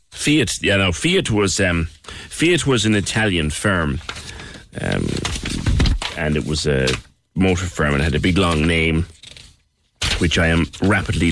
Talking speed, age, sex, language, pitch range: 155 wpm, 30-49, male, English, 85-115 Hz